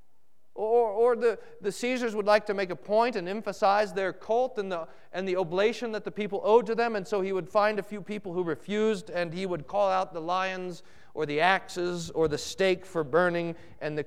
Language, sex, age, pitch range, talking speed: English, male, 40-59, 190-255 Hz, 225 wpm